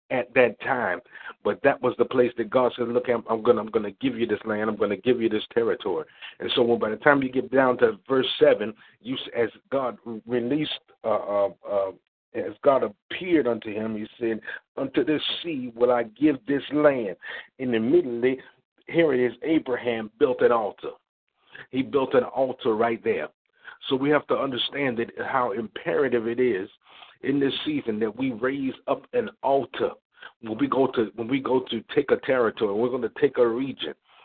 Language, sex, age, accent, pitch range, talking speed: English, male, 50-69, American, 115-150 Hz, 200 wpm